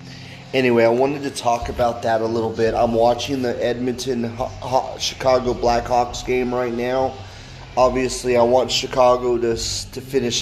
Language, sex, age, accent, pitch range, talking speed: English, male, 30-49, American, 115-125 Hz, 145 wpm